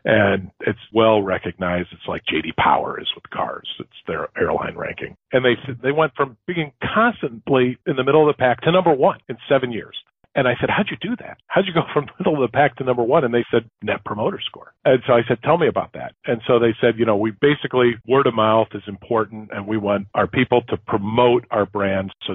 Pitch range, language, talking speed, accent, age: 105-140 Hz, English, 240 wpm, American, 40-59